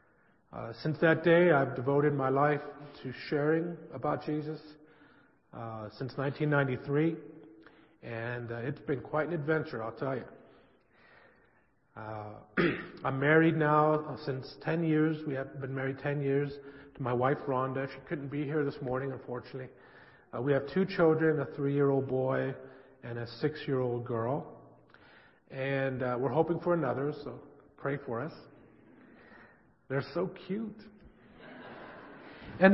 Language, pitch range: English, 125-160 Hz